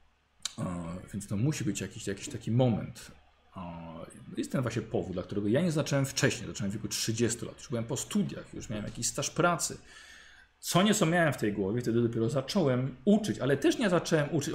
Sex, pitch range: male, 110-175 Hz